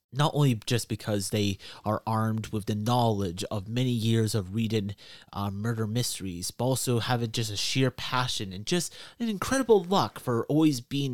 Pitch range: 105-135 Hz